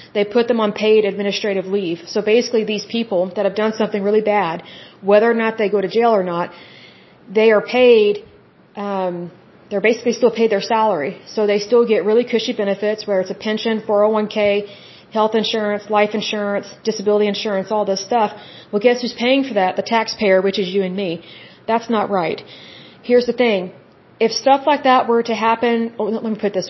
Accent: American